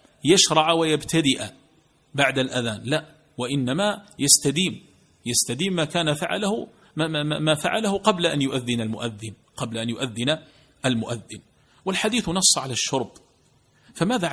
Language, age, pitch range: Arabic, 50-69, 125-160 Hz